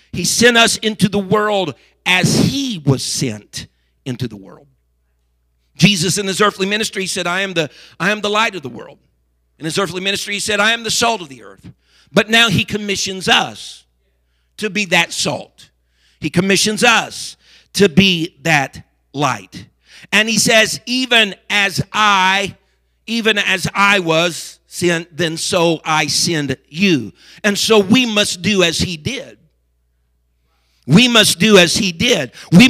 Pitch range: 170-220 Hz